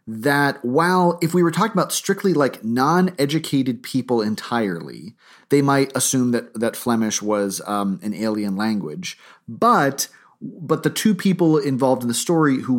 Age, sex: 30-49, male